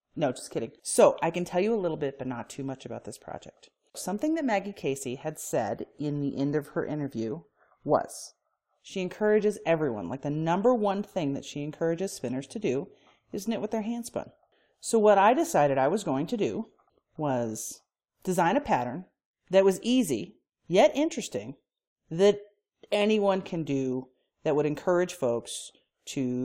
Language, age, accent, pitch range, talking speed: English, 40-59, American, 145-225 Hz, 175 wpm